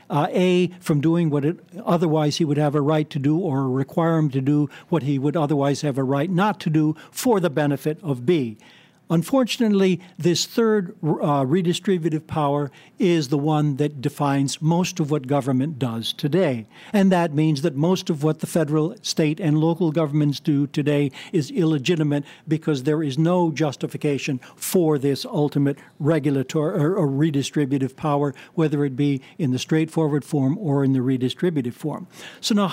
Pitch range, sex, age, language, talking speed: 140-170 Hz, male, 60-79, English, 170 wpm